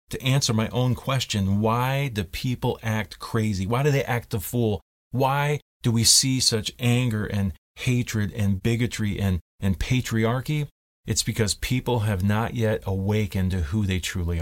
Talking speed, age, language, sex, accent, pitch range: 170 wpm, 40-59, English, male, American, 95-125 Hz